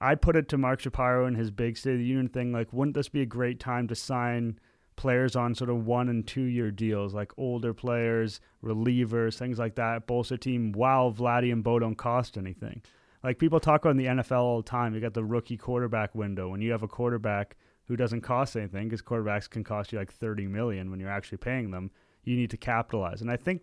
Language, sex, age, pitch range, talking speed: English, male, 30-49, 105-125 Hz, 235 wpm